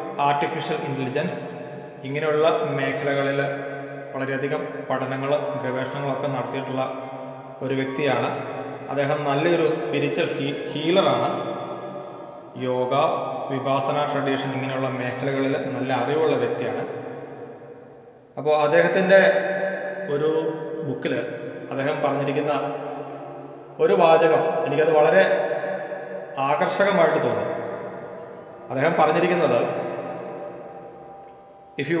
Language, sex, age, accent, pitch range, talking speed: Malayalam, male, 30-49, native, 135-160 Hz, 75 wpm